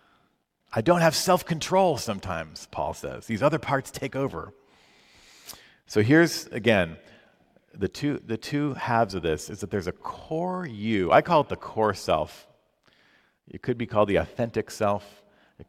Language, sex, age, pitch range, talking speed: English, male, 40-59, 90-125 Hz, 160 wpm